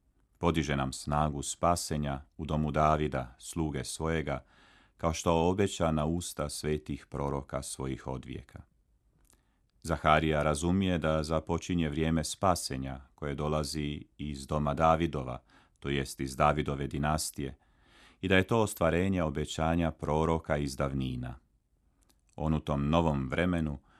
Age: 40-59